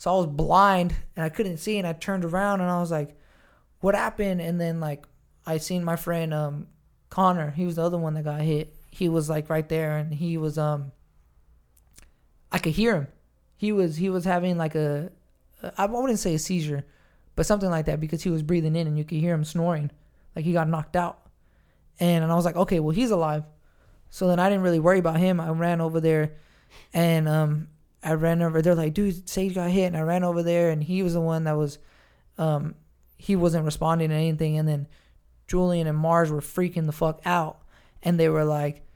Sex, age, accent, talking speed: male, 20-39, American, 220 wpm